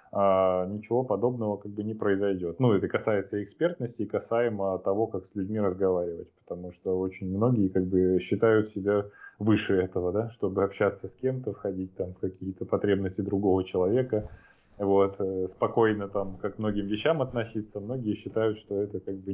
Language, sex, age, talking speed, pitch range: Russian, male, 20-39, 170 wpm, 100-115 Hz